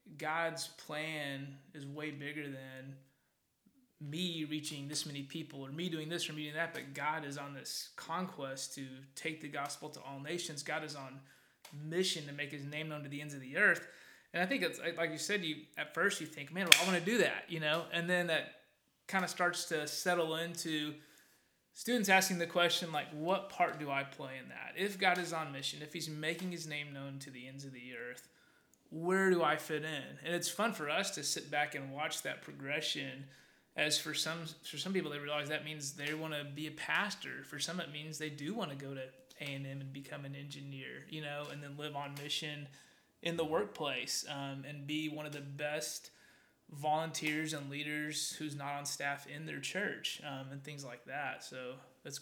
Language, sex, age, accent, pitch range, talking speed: English, male, 20-39, American, 140-165 Hz, 215 wpm